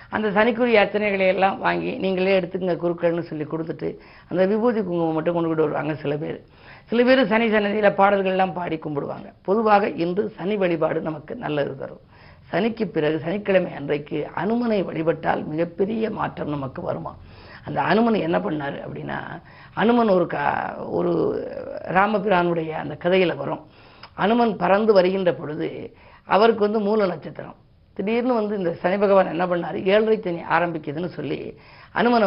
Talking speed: 130 wpm